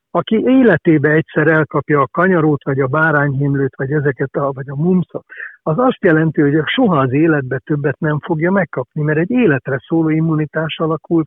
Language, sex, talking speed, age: Hungarian, male, 170 wpm, 60-79